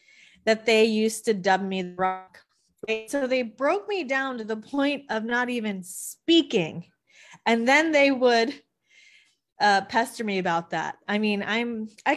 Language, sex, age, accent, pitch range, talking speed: English, female, 20-39, American, 185-235 Hz, 165 wpm